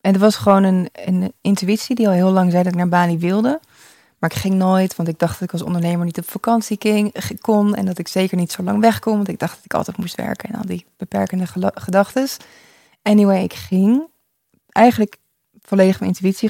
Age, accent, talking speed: 20-39, Dutch, 230 wpm